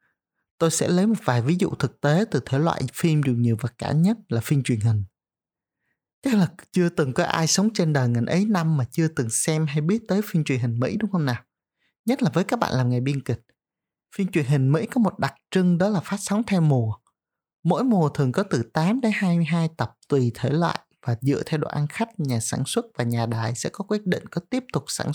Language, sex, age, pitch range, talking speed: Vietnamese, male, 20-39, 135-195 Hz, 245 wpm